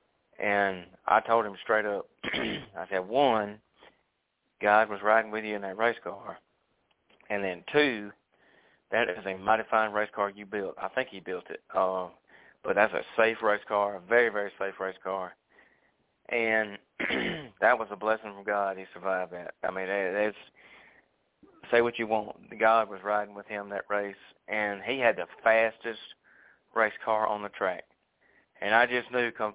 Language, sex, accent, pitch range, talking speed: English, male, American, 100-115 Hz, 175 wpm